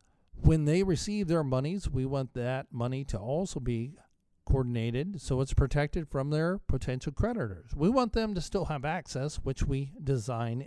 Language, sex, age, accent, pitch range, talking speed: English, male, 50-69, American, 130-165 Hz, 170 wpm